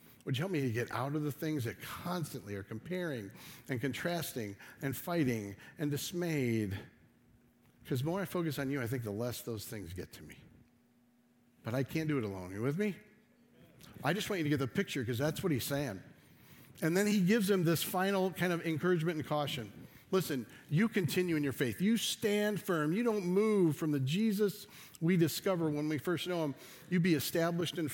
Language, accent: English, American